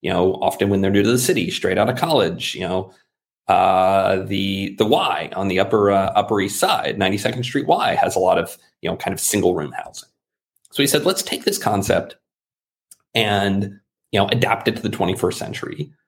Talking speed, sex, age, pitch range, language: 210 wpm, male, 30-49, 95-110 Hz, English